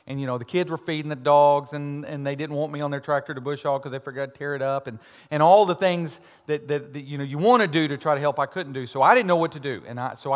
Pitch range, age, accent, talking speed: 120-150 Hz, 40-59, American, 340 wpm